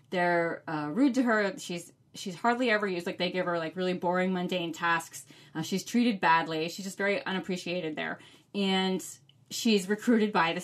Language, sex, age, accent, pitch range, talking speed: English, female, 20-39, American, 170-215 Hz, 185 wpm